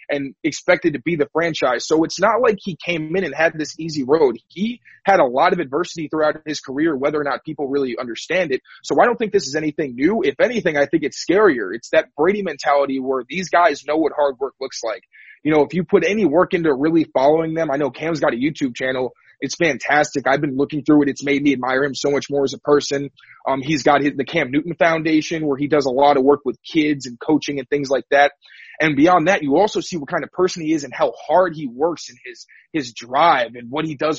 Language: English